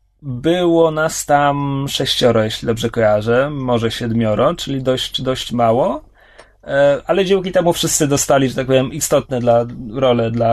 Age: 30-49